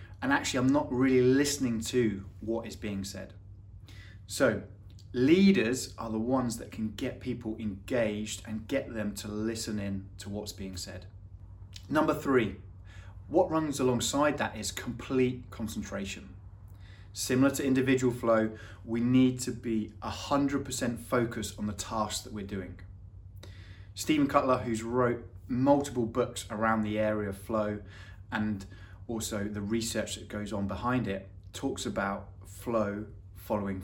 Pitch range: 100-120 Hz